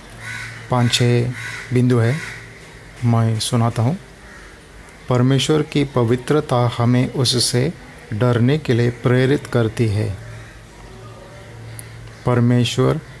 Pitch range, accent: 115-130 Hz, native